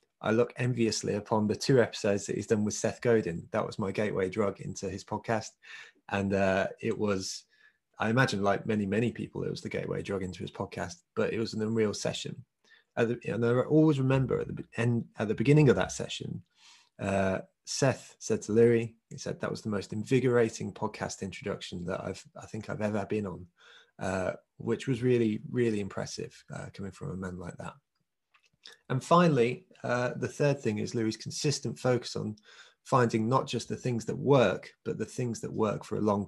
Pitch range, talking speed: 100-120 Hz, 190 wpm